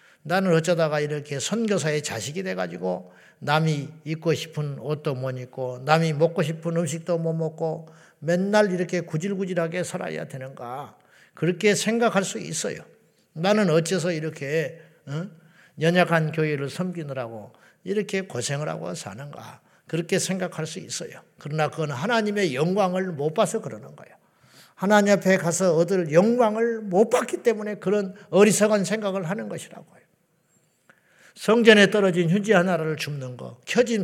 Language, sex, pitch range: Korean, male, 155-210 Hz